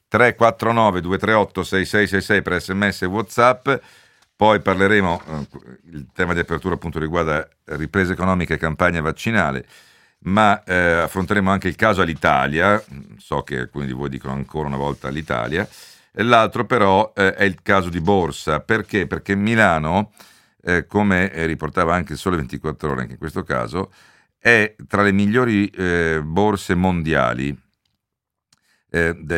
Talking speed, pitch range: 140 wpm, 75-95 Hz